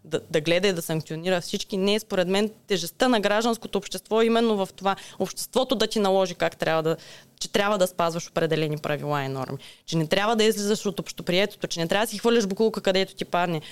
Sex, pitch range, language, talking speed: female, 170-220 Hz, Bulgarian, 215 wpm